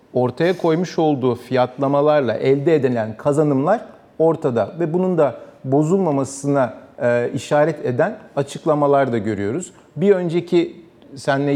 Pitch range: 130-160 Hz